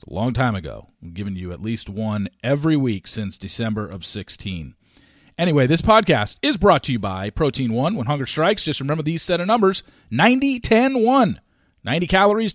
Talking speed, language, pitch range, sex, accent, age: 180 wpm, English, 110-175 Hz, male, American, 40-59